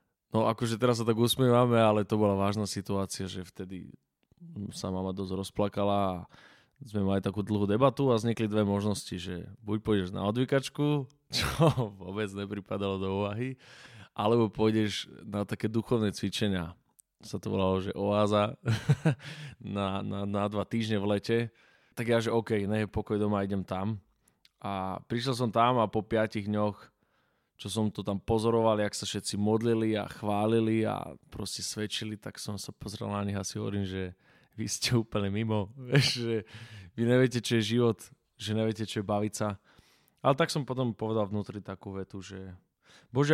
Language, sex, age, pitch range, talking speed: Slovak, male, 20-39, 100-115 Hz, 170 wpm